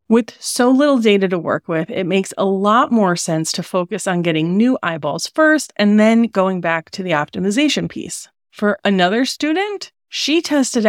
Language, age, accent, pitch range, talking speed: English, 30-49, American, 185-260 Hz, 180 wpm